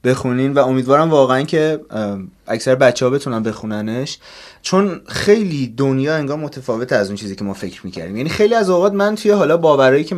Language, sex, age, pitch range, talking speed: Persian, male, 30-49, 120-155 Hz, 185 wpm